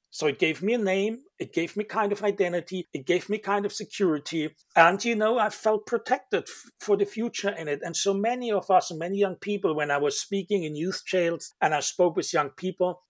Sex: male